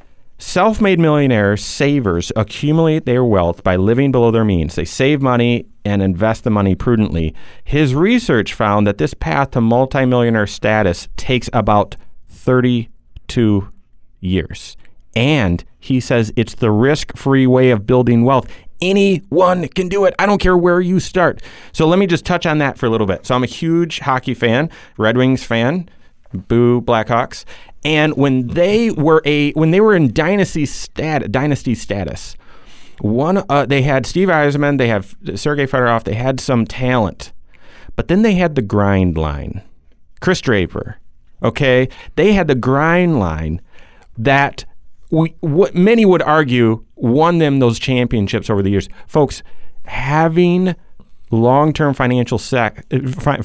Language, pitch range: English, 105-150 Hz